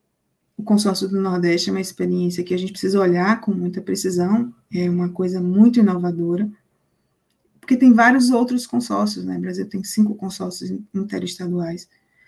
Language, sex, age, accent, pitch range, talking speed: English, female, 20-39, Brazilian, 190-245 Hz, 155 wpm